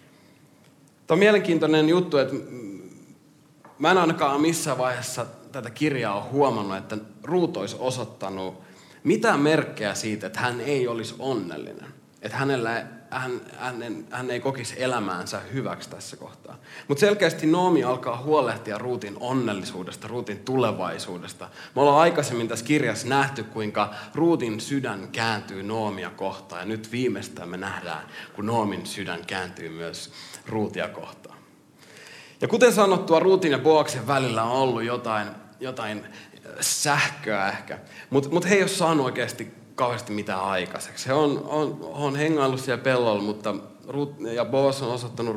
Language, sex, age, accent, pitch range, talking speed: Finnish, male, 30-49, native, 105-135 Hz, 135 wpm